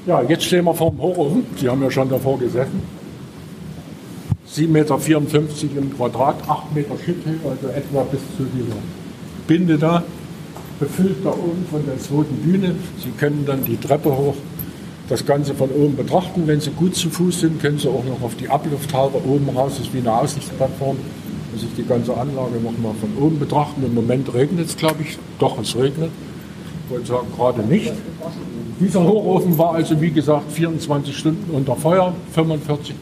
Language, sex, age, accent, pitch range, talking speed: German, male, 50-69, German, 130-160 Hz, 180 wpm